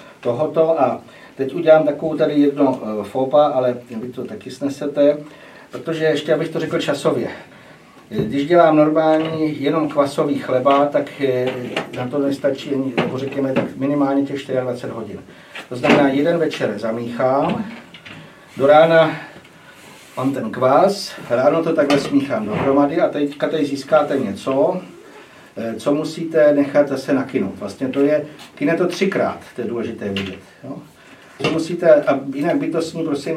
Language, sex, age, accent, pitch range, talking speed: Czech, male, 60-79, native, 135-160 Hz, 140 wpm